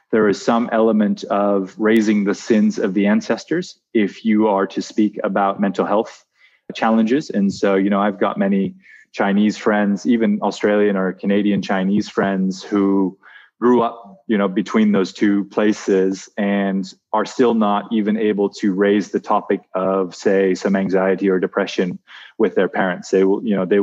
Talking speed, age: 170 wpm, 20-39